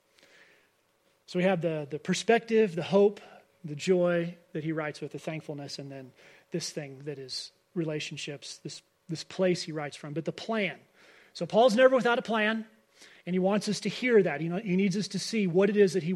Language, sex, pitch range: English, male, 165-200 Hz